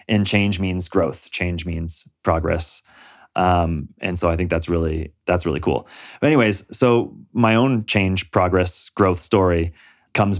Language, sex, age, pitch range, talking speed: English, male, 30-49, 90-105 Hz, 155 wpm